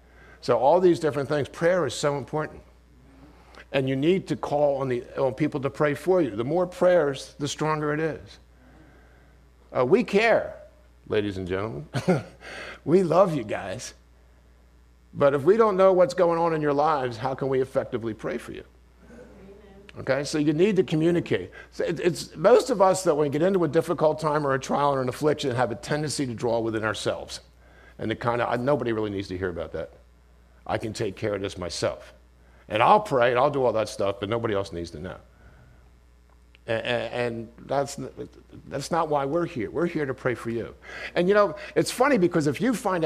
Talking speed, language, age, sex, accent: 200 wpm, English, 50-69, male, American